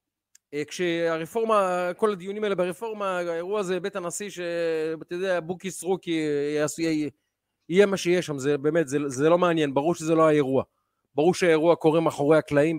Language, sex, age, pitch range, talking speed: Hebrew, male, 40-59, 150-200 Hz, 160 wpm